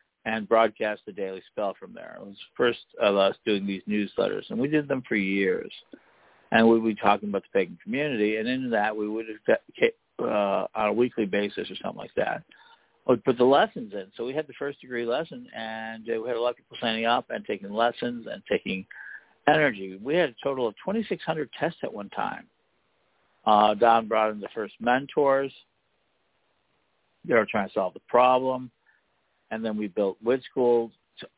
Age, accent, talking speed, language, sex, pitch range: 50-69, American, 195 wpm, English, male, 105-140 Hz